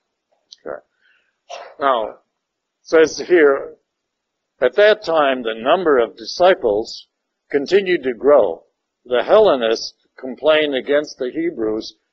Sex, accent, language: male, American, English